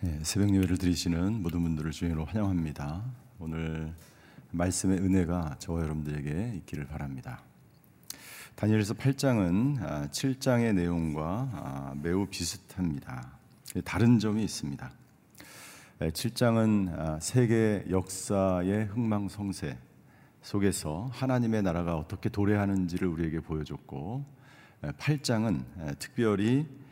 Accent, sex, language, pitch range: native, male, Korean, 85-120 Hz